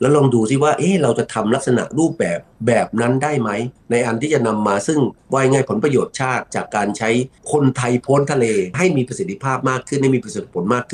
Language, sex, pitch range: Thai, male, 110-145 Hz